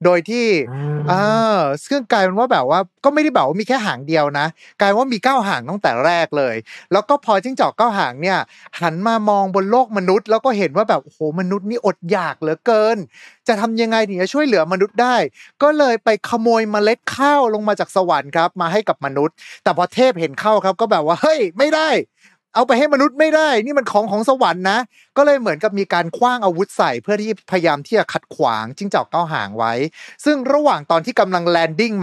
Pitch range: 175-235 Hz